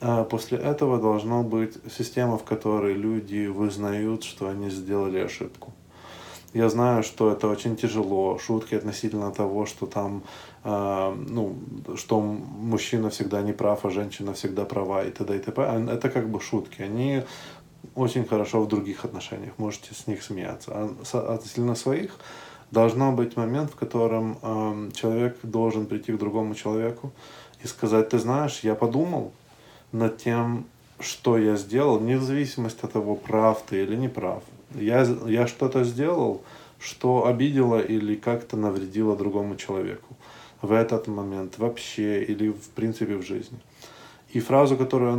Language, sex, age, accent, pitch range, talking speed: Russian, male, 20-39, native, 105-120 Hz, 145 wpm